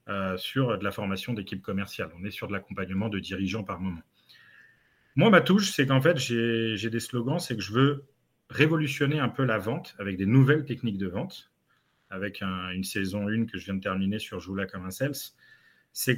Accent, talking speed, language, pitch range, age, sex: French, 210 wpm, French, 105-140 Hz, 40-59, male